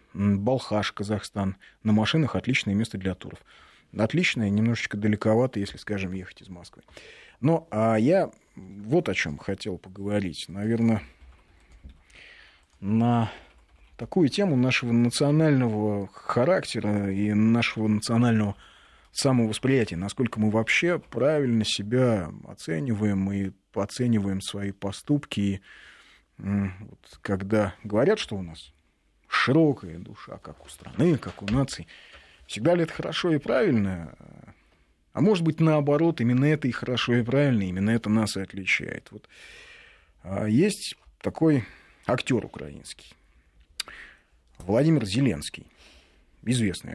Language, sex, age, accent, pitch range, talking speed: Russian, male, 30-49, native, 95-125 Hz, 115 wpm